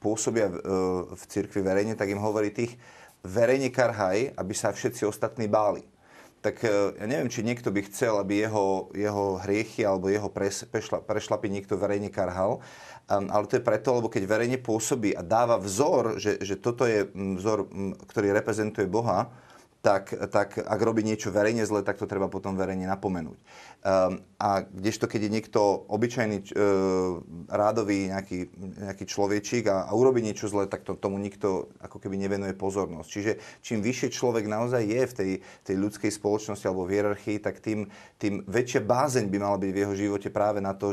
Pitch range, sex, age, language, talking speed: 95-110 Hz, male, 30-49, Slovak, 170 wpm